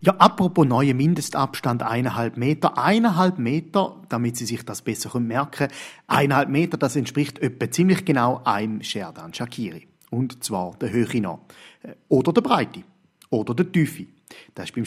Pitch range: 120-180 Hz